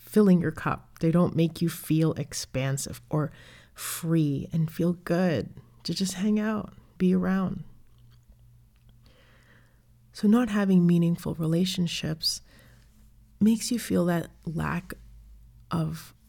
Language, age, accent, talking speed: English, 30-49, American, 115 wpm